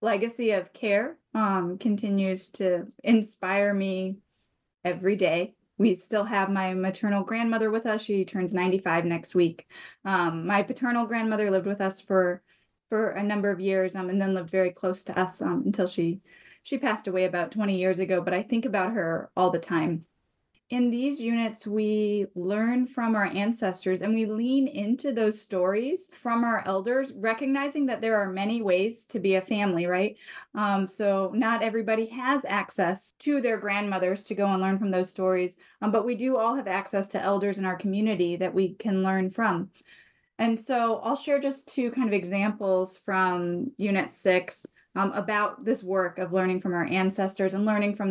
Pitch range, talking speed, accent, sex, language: 185-225 Hz, 180 wpm, American, female, English